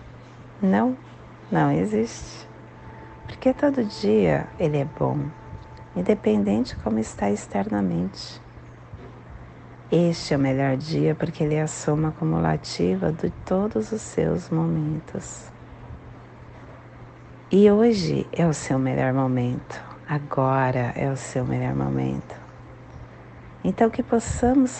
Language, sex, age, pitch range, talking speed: Portuguese, female, 40-59, 125-180 Hz, 110 wpm